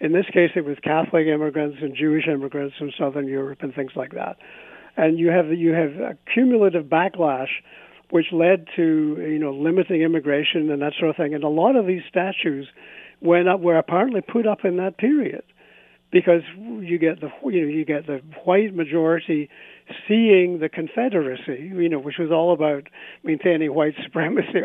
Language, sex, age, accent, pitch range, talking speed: English, male, 60-79, American, 155-195 Hz, 185 wpm